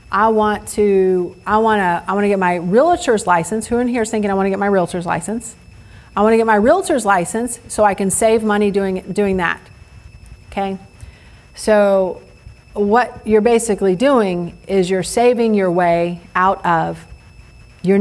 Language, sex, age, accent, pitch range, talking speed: English, female, 40-59, American, 175-215 Hz, 180 wpm